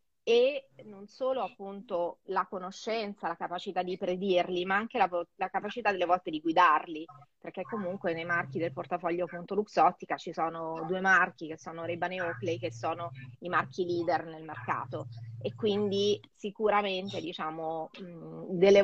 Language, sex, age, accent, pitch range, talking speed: Italian, female, 30-49, native, 165-190 Hz, 150 wpm